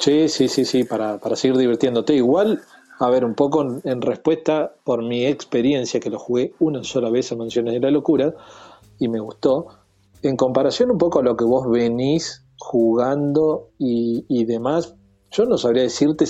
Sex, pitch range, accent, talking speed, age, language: male, 120-135 Hz, Argentinian, 185 wpm, 40-59, Spanish